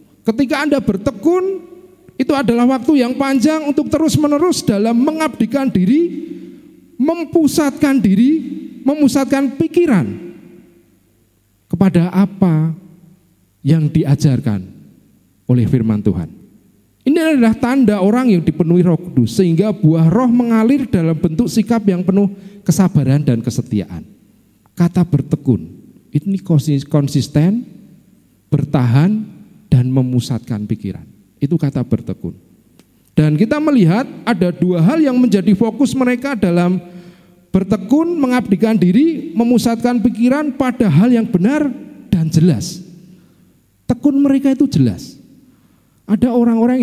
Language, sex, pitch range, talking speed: Indonesian, male, 165-265 Hz, 110 wpm